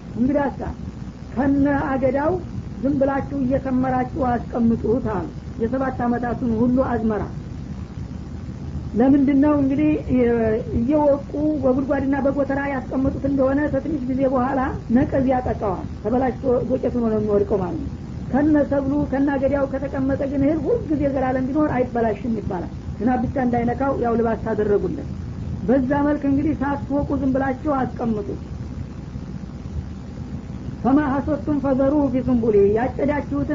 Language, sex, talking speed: Amharic, female, 100 wpm